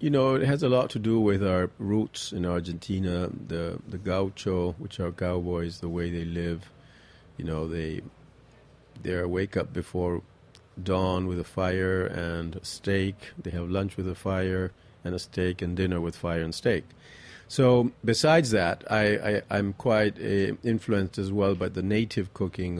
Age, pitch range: 40-59, 85-105 Hz